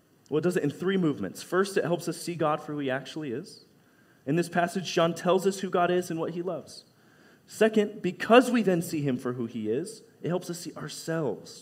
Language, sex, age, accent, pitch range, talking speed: English, male, 30-49, American, 120-170 Hz, 240 wpm